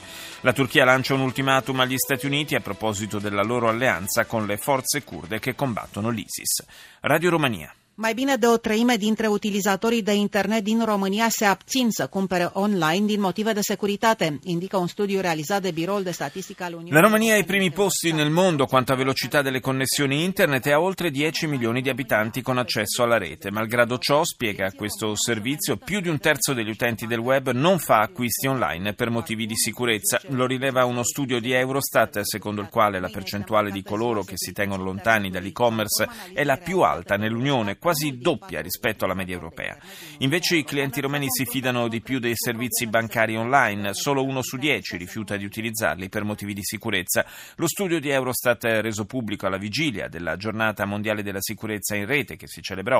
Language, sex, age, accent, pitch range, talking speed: Italian, male, 30-49, native, 110-150 Hz, 155 wpm